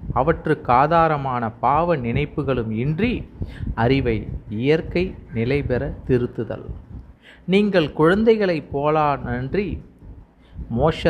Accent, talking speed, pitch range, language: native, 80 wpm, 115-150 Hz, Tamil